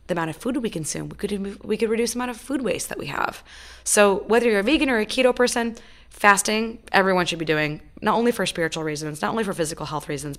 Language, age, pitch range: English, 20-39, 165-225 Hz